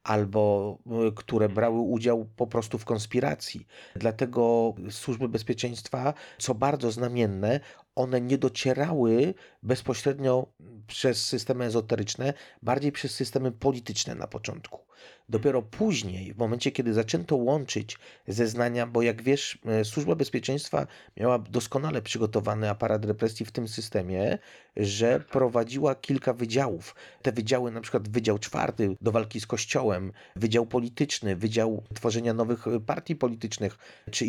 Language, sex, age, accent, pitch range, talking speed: Polish, male, 30-49, native, 110-130 Hz, 120 wpm